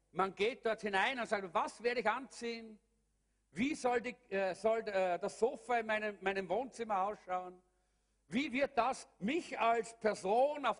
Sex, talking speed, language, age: male, 155 wpm, German, 50-69